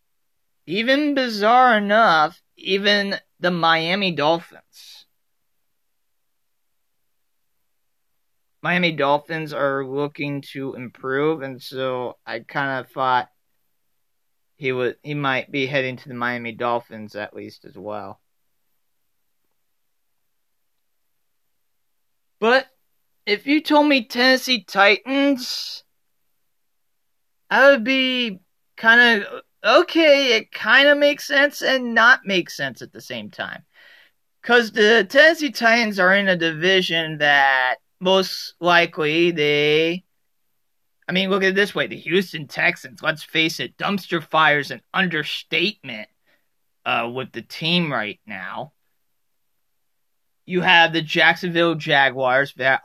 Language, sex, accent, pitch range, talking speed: English, male, American, 140-215 Hz, 110 wpm